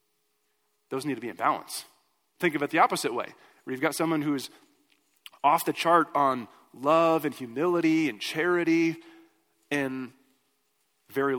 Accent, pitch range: American, 130-180 Hz